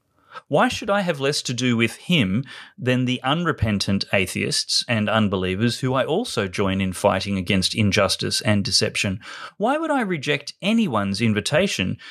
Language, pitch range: English, 105-135 Hz